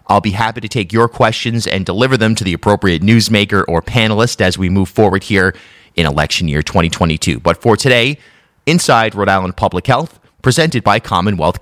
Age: 30-49